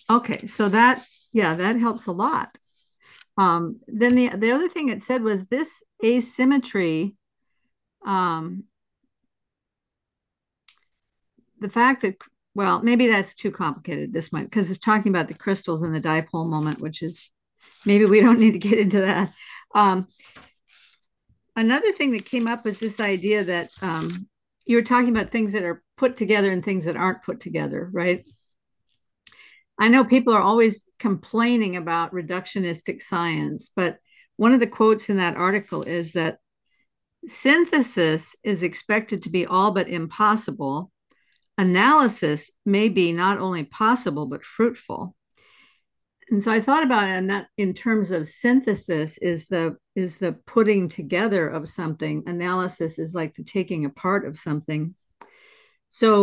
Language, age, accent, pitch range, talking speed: English, 50-69, American, 175-230 Hz, 150 wpm